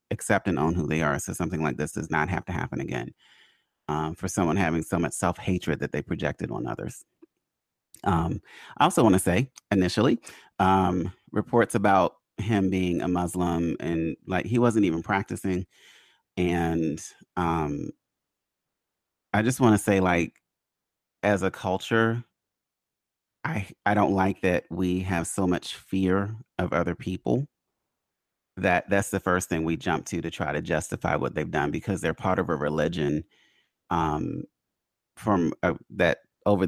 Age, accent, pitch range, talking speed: 30-49, American, 85-100 Hz, 160 wpm